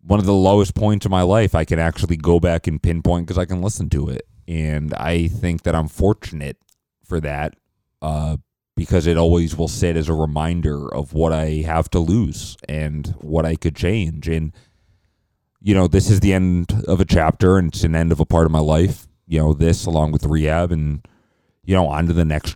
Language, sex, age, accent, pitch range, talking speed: English, male, 30-49, American, 80-95 Hz, 220 wpm